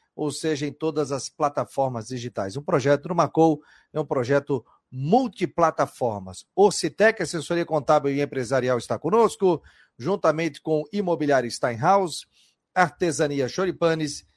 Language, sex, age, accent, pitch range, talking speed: Portuguese, male, 40-59, Brazilian, 135-165 Hz, 130 wpm